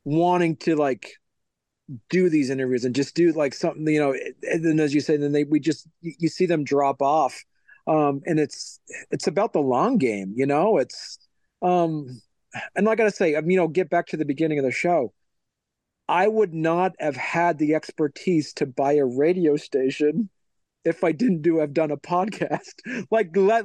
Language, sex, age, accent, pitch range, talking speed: English, male, 40-59, American, 145-185 Hz, 195 wpm